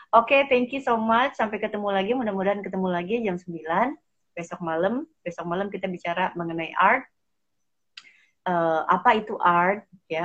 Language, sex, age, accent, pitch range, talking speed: Indonesian, female, 30-49, native, 170-210 Hz, 160 wpm